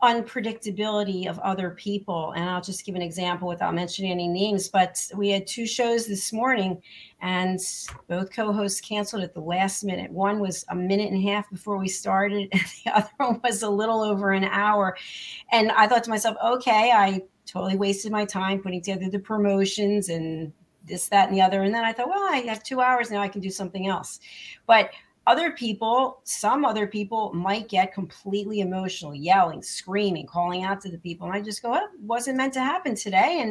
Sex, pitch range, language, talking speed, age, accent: female, 185-225 Hz, English, 200 wpm, 40-59, American